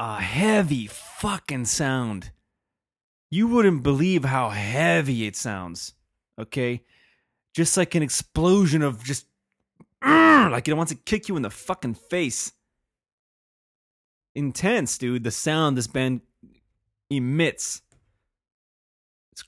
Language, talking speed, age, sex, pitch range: English, 110 wpm, 30-49, male, 120-180 Hz